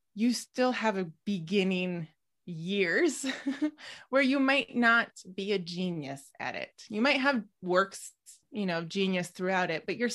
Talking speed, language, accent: 155 wpm, English, American